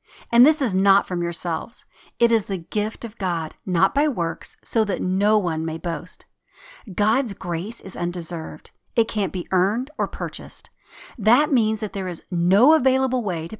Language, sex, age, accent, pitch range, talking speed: English, female, 40-59, American, 175-245 Hz, 175 wpm